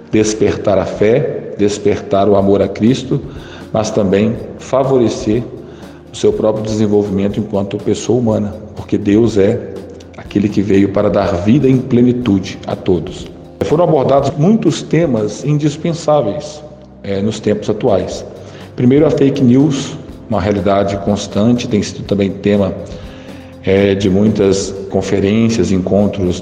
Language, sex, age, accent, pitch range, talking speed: Portuguese, male, 40-59, Brazilian, 100-115 Hz, 125 wpm